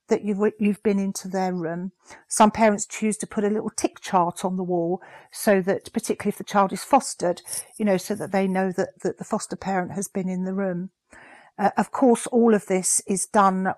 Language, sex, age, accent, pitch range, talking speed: English, female, 50-69, British, 190-225 Hz, 220 wpm